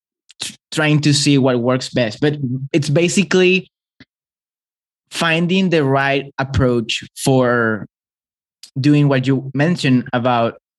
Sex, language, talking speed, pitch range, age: male, English, 105 wpm, 130-160 Hz, 20-39